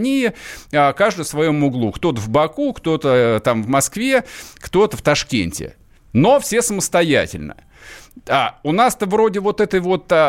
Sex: male